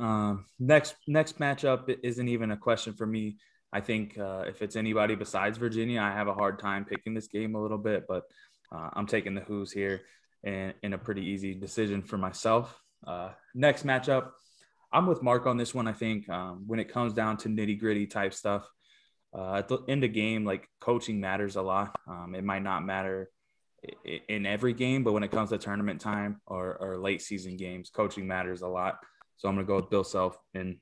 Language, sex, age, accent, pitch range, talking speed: English, male, 20-39, American, 95-110 Hz, 210 wpm